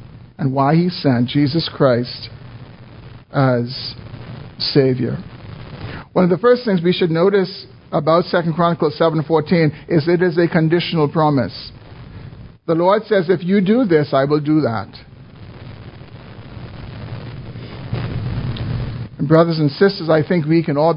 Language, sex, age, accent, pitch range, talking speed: English, male, 50-69, American, 125-165 Hz, 130 wpm